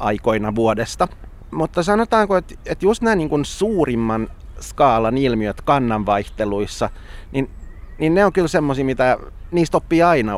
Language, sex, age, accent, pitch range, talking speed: Finnish, male, 30-49, native, 110-155 Hz, 135 wpm